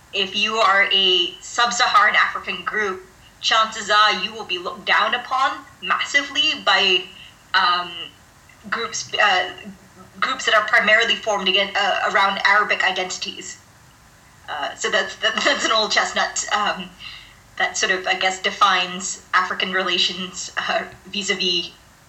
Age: 30-49